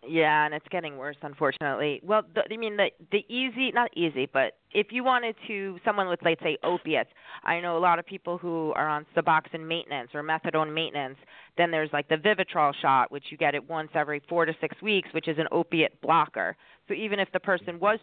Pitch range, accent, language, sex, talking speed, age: 165-225 Hz, American, English, female, 215 wpm, 30-49